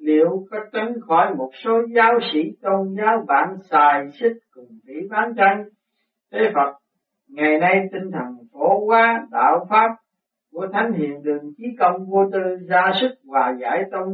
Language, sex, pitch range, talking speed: Vietnamese, male, 150-225 Hz, 170 wpm